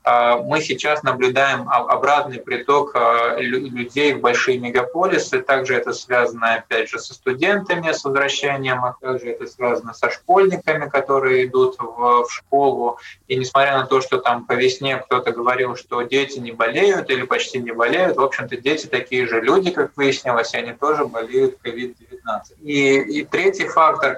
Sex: male